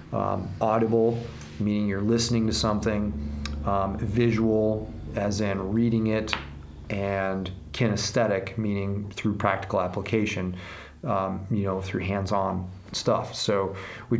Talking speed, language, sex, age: 115 wpm, English, male, 30-49